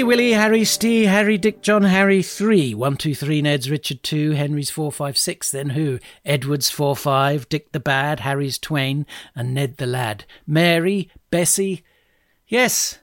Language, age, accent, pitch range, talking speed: English, 60-79, British, 130-175 Hz, 160 wpm